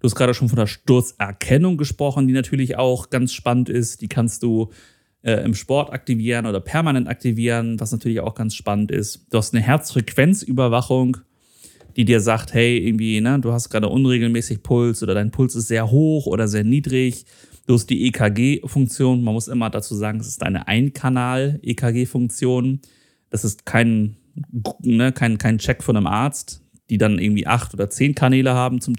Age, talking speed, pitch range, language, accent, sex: 30-49, 180 wpm, 110-130 Hz, German, German, male